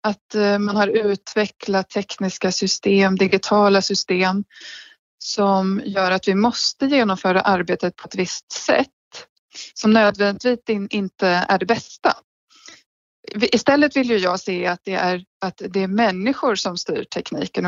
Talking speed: 135 wpm